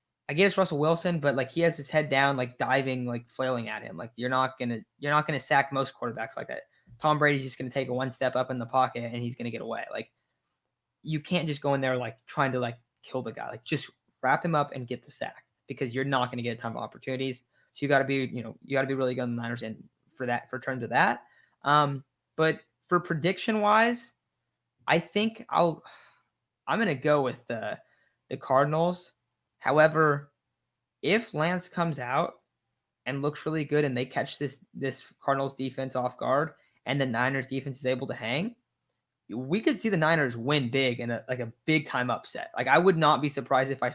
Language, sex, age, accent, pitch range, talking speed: English, male, 20-39, American, 125-155 Hz, 220 wpm